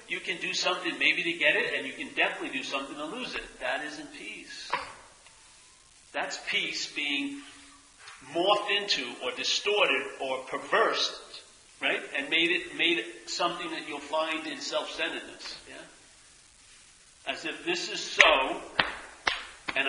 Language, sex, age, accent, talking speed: English, male, 50-69, American, 145 wpm